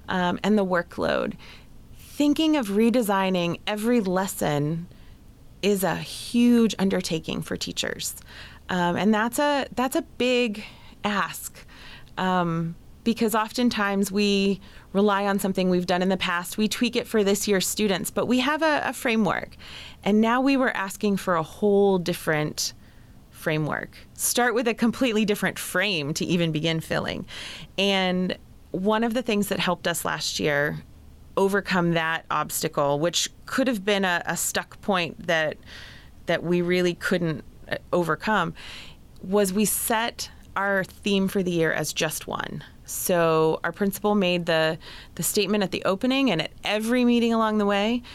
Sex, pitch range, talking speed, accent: female, 175-215 Hz, 155 wpm, American